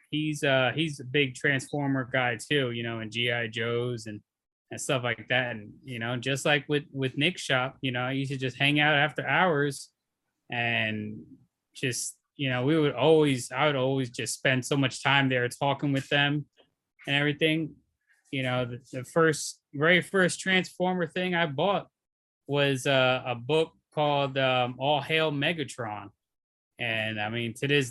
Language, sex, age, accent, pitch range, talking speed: English, male, 20-39, American, 120-145 Hz, 180 wpm